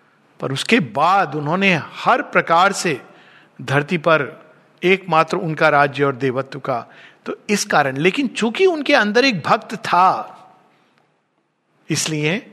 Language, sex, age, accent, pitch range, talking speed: Hindi, male, 50-69, native, 165-230 Hz, 125 wpm